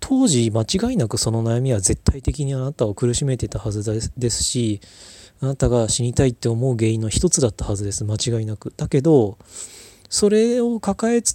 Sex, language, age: male, Japanese, 20-39